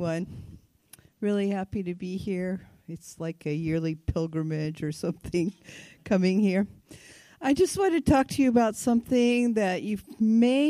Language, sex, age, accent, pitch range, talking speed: English, female, 50-69, American, 165-210 Hz, 145 wpm